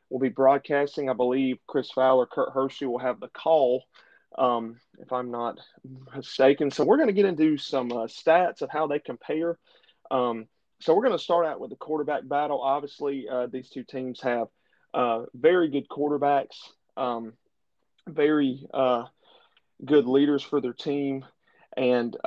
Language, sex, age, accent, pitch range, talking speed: English, male, 30-49, American, 125-145 Hz, 165 wpm